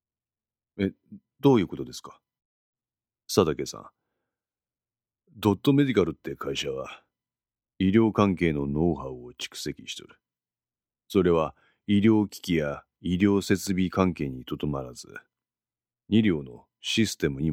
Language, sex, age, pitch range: Japanese, male, 40-59, 75-105 Hz